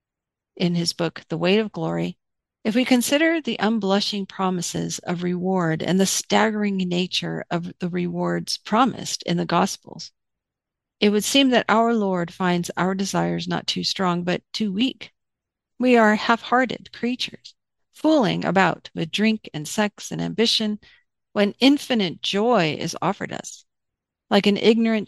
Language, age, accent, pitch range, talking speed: English, 50-69, American, 175-220 Hz, 150 wpm